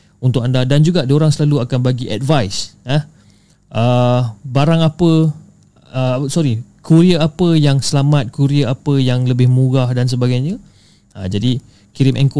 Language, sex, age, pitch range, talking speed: Malay, male, 30-49, 120-160 Hz, 145 wpm